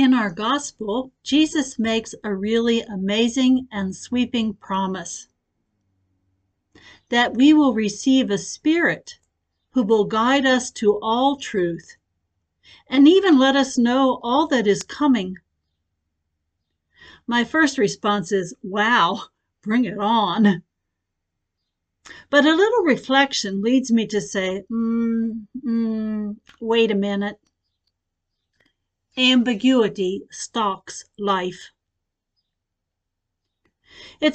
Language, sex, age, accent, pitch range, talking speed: English, female, 60-79, American, 185-250 Hz, 100 wpm